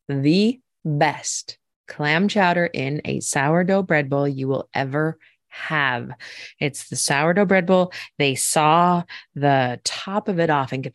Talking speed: 150 wpm